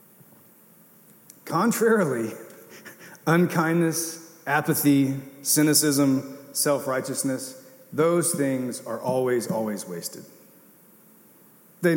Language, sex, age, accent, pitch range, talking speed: English, male, 40-59, American, 125-160 Hz, 60 wpm